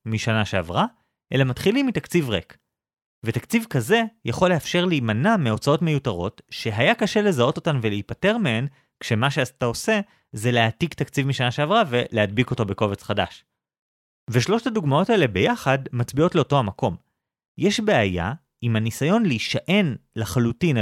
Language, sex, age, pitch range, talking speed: Hebrew, male, 30-49, 115-185 Hz, 125 wpm